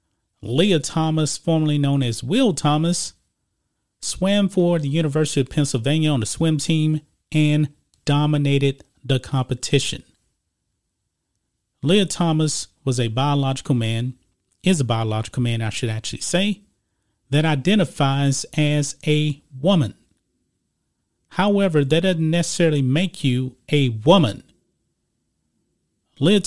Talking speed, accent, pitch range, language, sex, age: 110 wpm, American, 120-165 Hz, English, male, 40-59